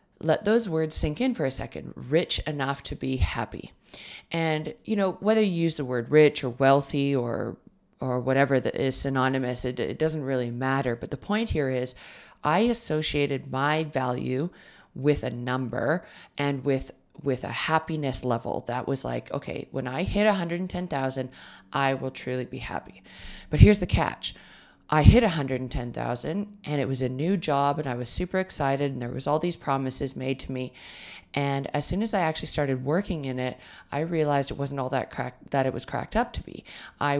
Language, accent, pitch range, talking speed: English, American, 130-155 Hz, 190 wpm